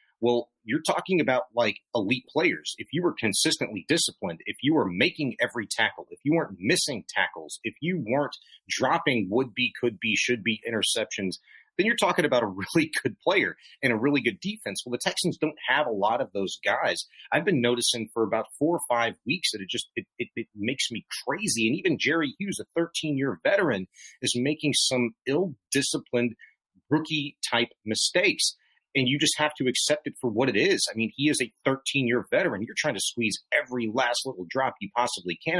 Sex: male